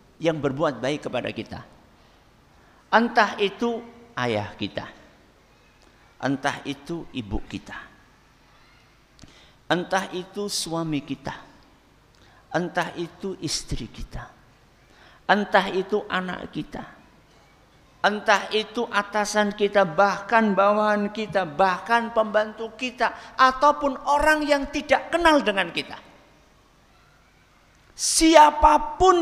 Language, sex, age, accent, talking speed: Indonesian, male, 50-69, native, 90 wpm